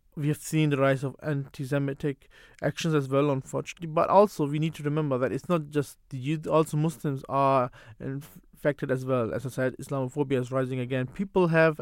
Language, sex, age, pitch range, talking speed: English, male, 20-39, 135-170 Hz, 195 wpm